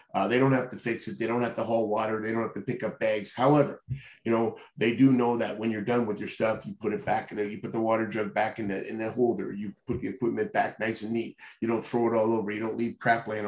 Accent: American